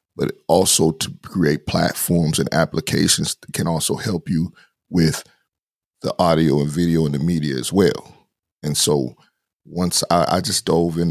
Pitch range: 75-85 Hz